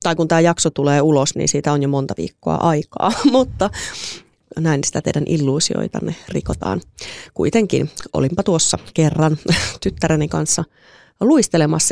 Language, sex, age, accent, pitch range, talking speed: Finnish, female, 30-49, native, 155-185 Hz, 130 wpm